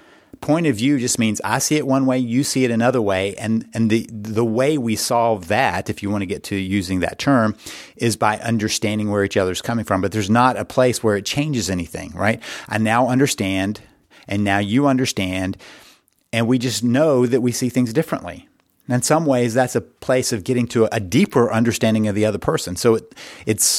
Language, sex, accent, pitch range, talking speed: English, male, American, 105-130 Hz, 215 wpm